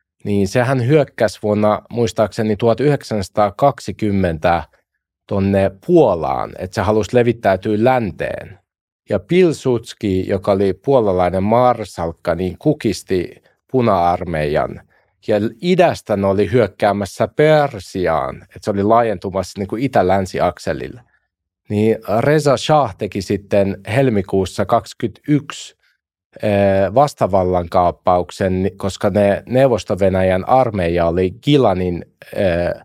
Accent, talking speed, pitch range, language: native, 90 wpm, 95-115 Hz, Finnish